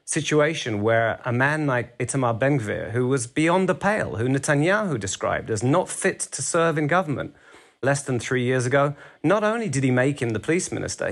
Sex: male